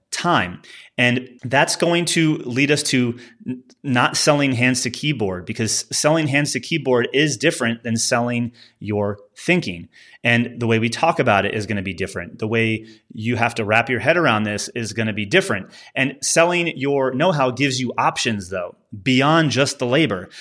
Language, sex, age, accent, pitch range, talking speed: English, male, 30-49, American, 115-145 Hz, 190 wpm